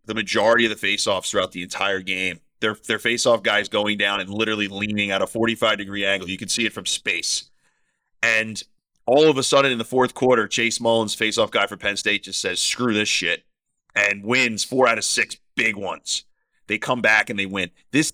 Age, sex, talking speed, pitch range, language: 30-49, male, 215 wpm, 105-130 Hz, English